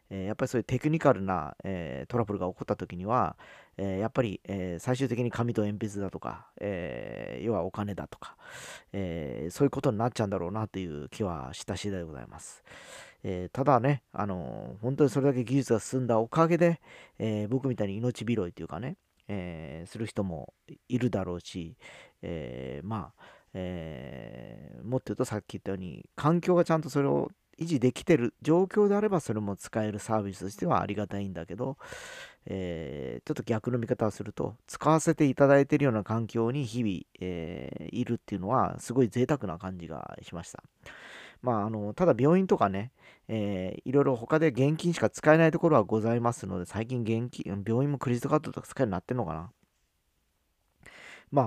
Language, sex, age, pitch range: Japanese, male, 40-59, 95-135 Hz